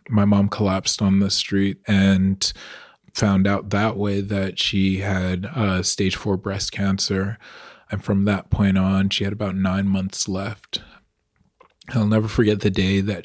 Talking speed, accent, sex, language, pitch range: 170 wpm, American, male, English, 95-105 Hz